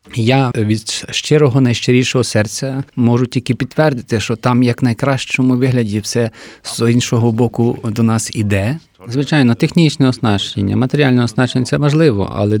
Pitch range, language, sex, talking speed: 110-130 Hz, Ukrainian, male, 135 wpm